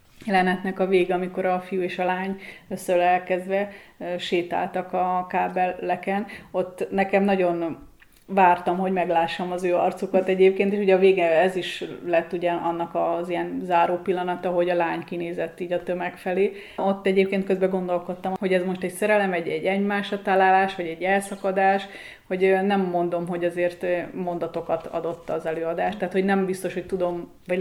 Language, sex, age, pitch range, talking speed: Hungarian, female, 30-49, 175-190 Hz, 165 wpm